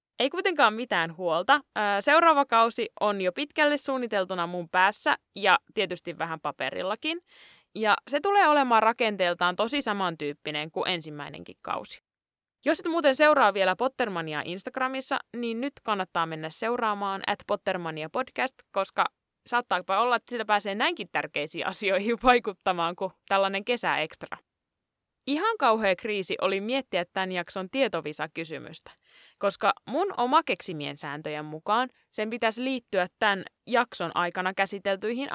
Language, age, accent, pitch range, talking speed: Finnish, 20-39, native, 185-260 Hz, 125 wpm